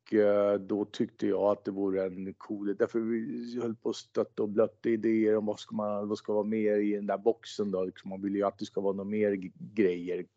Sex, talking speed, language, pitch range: male, 235 wpm, Swedish, 100-115 Hz